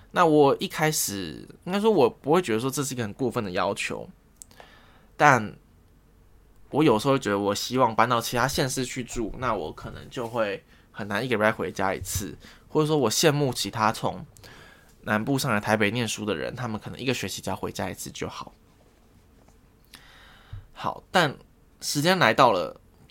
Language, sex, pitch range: Chinese, male, 100-135 Hz